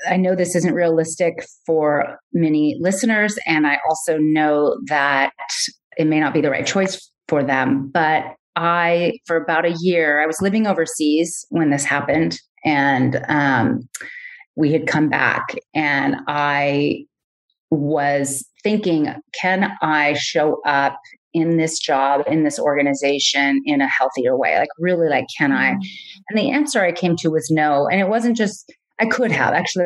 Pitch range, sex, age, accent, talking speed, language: 145-175 Hz, female, 30-49, American, 160 wpm, English